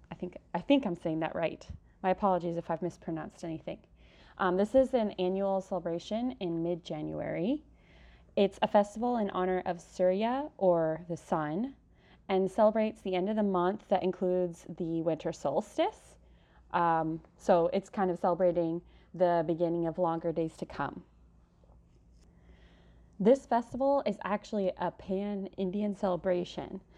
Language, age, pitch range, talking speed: English, 20-39, 165-195 Hz, 140 wpm